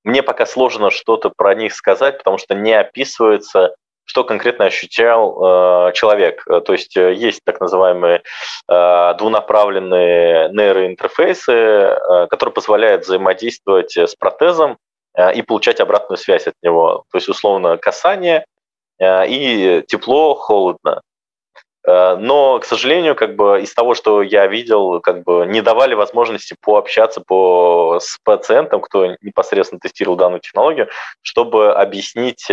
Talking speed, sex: 130 wpm, male